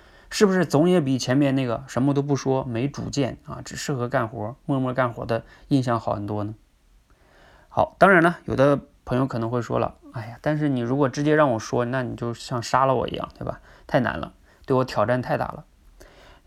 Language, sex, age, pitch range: Chinese, male, 20-39, 115-135 Hz